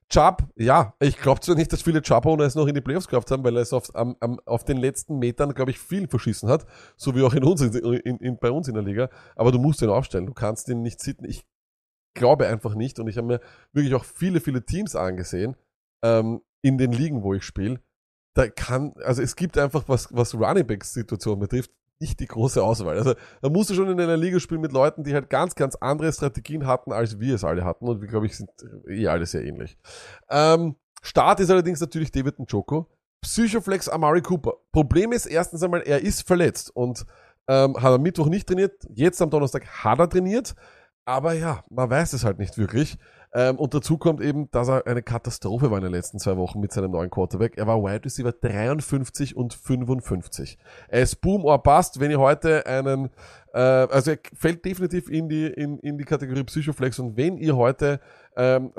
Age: 30-49